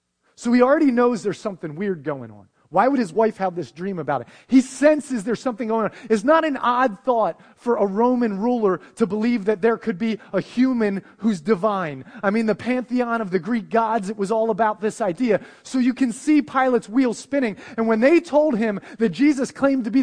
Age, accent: 30-49, American